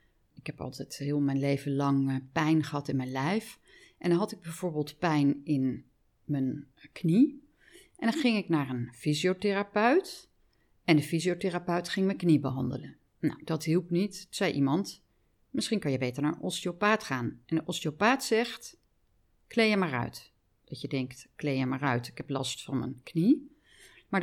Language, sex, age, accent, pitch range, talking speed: Dutch, female, 40-59, Dutch, 145-205 Hz, 180 wpm